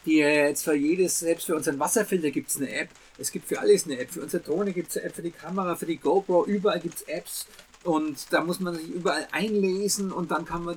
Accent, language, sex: German, German, male